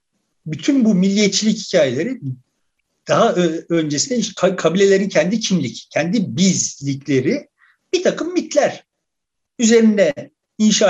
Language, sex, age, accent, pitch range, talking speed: Turkish, male, 50-69, native, 175-235 Hz, 90 wpm